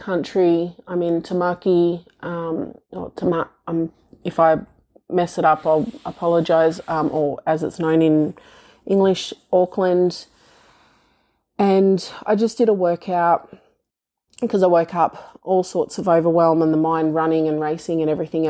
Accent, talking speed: Australian, 145 wpm